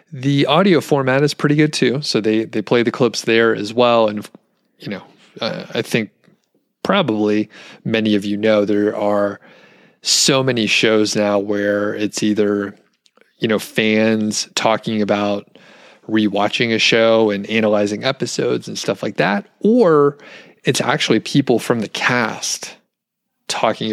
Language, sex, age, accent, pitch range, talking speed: English, male, 30-49, American, 105-130 Hz, 150 wpm